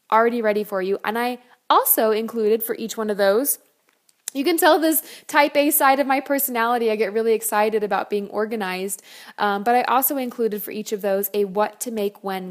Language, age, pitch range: English, 20-39, 200-255 Hz